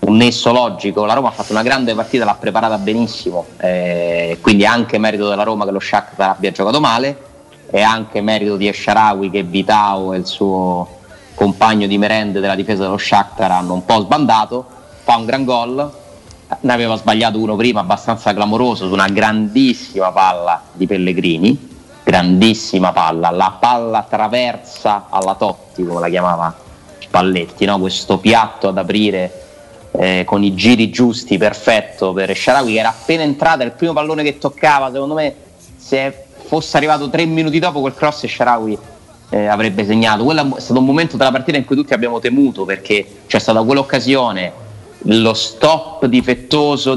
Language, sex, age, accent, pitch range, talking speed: Italian, male, 30-49, native, 100-130 Hz, 165 wpm